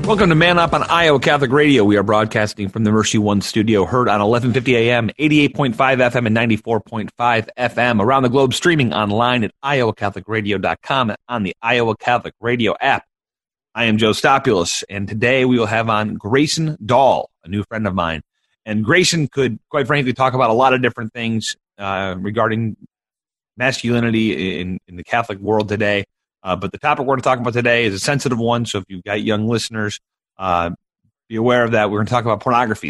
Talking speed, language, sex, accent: 195 wpm, English, male, American